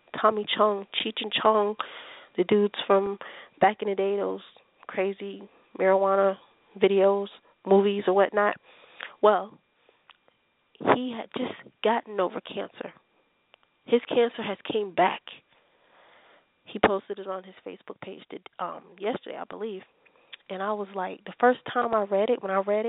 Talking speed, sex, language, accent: 145 wpm, female, English, American